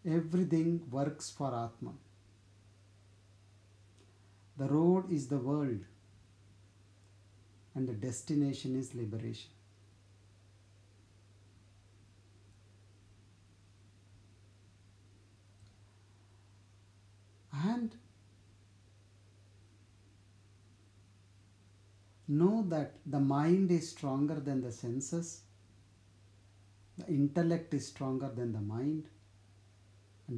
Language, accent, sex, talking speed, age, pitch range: English, Indian, male, 65 wpm, 60-79, 100-140 Hz